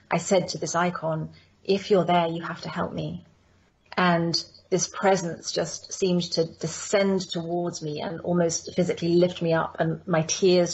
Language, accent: English, British